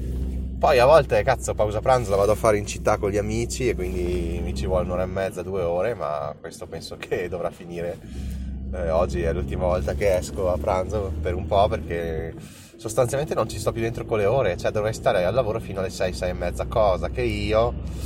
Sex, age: male, 20-39